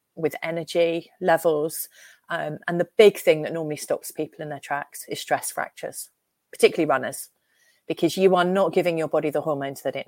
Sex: female